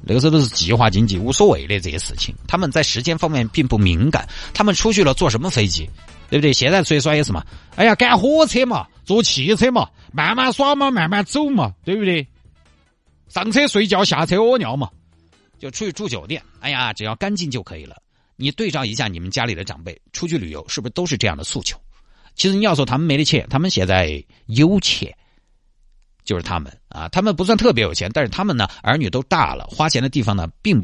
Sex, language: male, Chinese